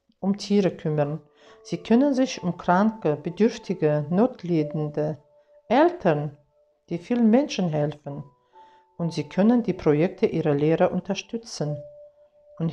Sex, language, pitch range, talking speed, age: female, German, 155-225 Hz, 115 wpm, 60-79